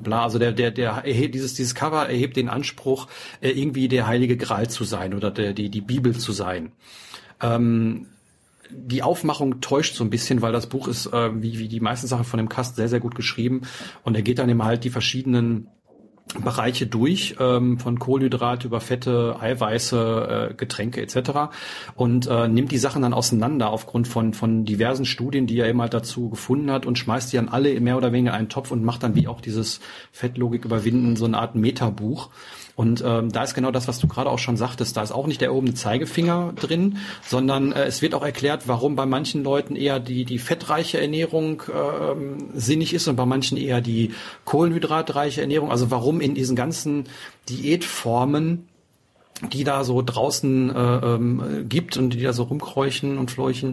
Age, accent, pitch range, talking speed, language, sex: 40-59, German, 120-140 Hz, 190 wpm, German, male